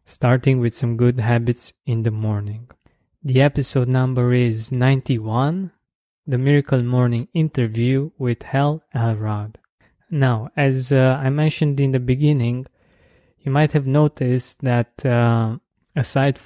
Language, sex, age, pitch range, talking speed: English, male, 20-39, 120-140 Hz, 130 wpm